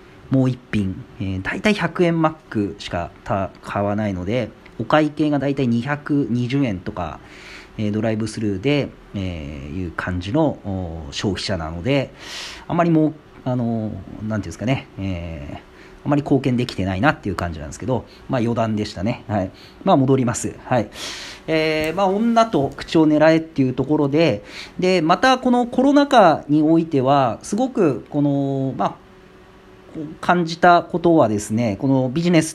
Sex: male